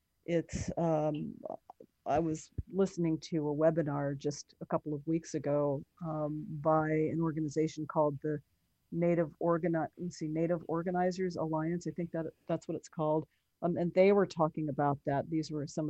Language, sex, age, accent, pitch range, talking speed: English, female, 40-59, American, 150-170 Hz, 160 wpm